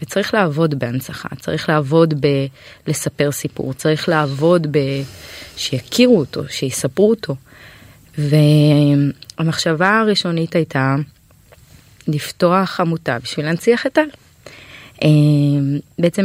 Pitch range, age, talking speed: 145-180 Hz, 20-39, 90 wpm